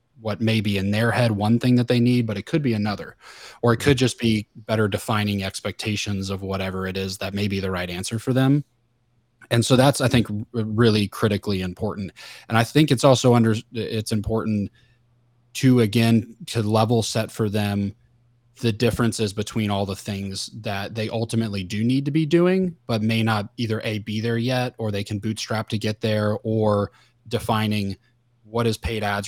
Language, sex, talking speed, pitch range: English, male, 195 wpm, 100-120 Hz